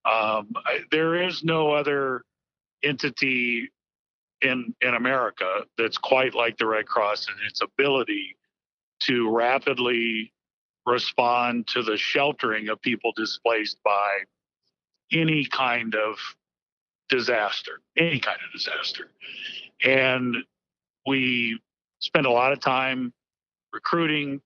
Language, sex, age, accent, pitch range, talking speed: English, male, 50-69, American, 110-145 Hz, 110 wpm